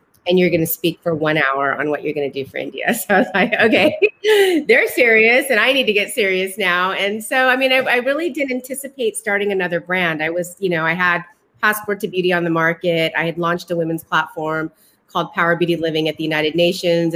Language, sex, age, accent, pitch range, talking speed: Hindi, female, 30-49, American, 165-200 Hz, 240 wpm